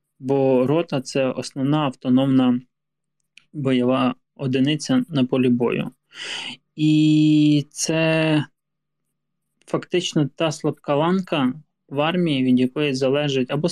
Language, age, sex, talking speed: Ukrainian, 20-39, male, 100 wpm